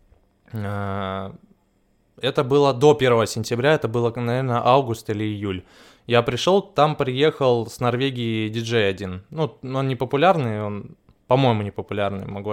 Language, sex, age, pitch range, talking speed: Russian, male, 20-39, 110-140 Hz, 125 wpm